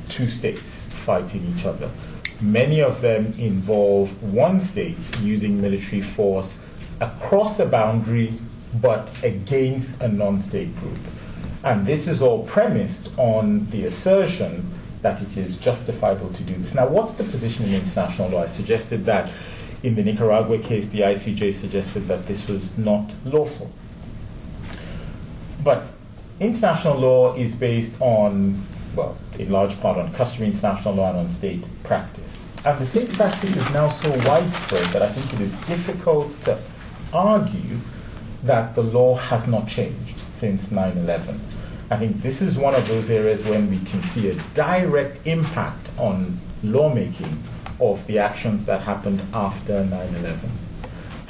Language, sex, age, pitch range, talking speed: English, male, 30-49, 100-135 Hz, 145 wpm